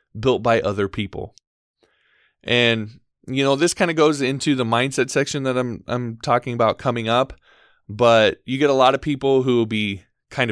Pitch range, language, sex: 110-140 Hz, English, male